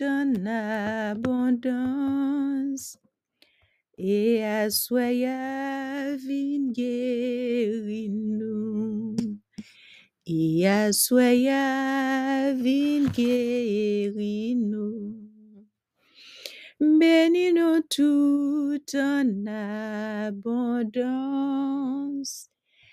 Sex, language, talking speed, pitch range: female, English, 40 wpm, 220-290 Hz